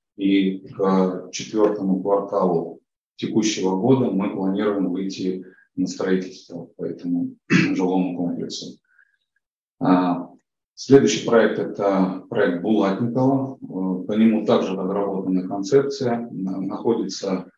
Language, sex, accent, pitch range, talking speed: Russian, male, native, 95-115 Hz, 90 wpm